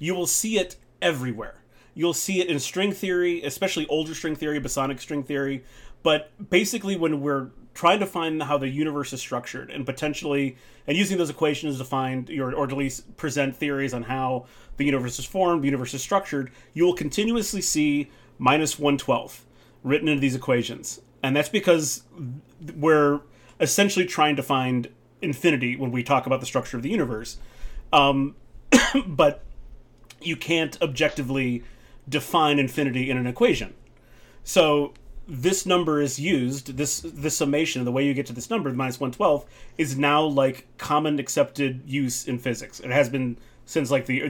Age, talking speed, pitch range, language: 30-49, 170 wpm, 130-160 Hz, English